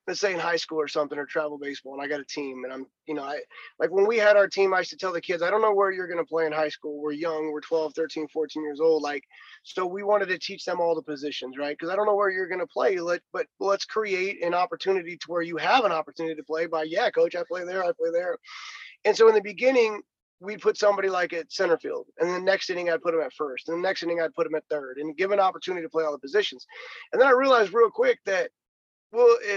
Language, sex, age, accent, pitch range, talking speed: English, male, 20-39, American, 165-215 Hz, 285 wpm